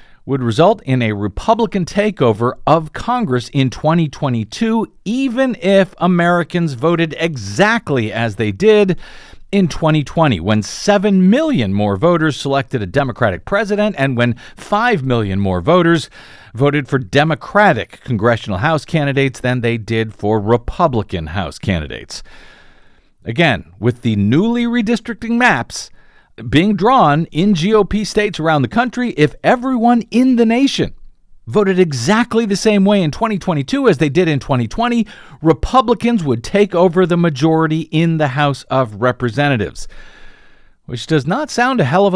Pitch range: 125-185 Hz